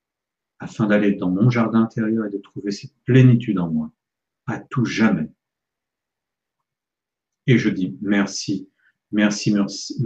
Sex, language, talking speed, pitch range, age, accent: male, French, 130 wpm, 105-130 Hz, 50-69, French